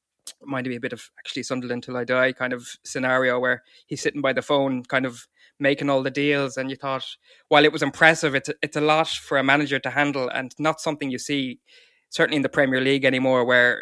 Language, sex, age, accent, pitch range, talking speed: English, male, 20-39, Irish, 125-140 Hz, 230 wpm